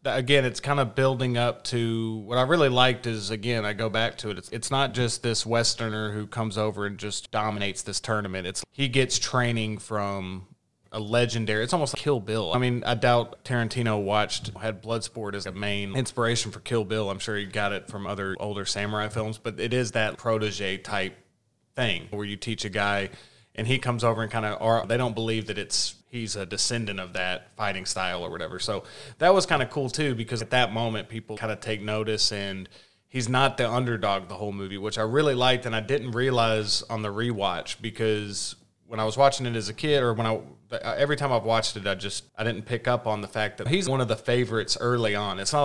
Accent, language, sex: American, English, male